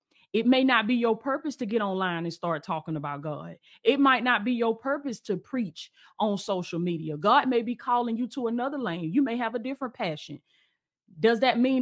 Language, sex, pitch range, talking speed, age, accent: English, female, 210-265 Hz, 215 wpm, 30-49, American